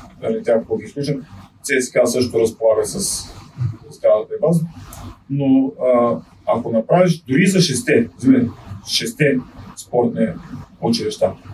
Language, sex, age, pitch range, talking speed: Bulgarian, male, 30-49, 115-155 Hz, 100 wpm